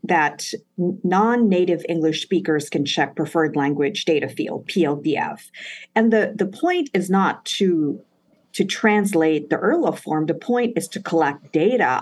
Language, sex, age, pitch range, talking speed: English, female, 50-69, 160-220 Hz, 145 wpm